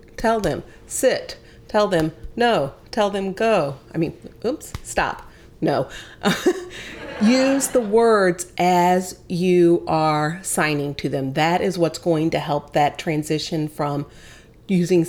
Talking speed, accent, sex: 130 wpm, American, female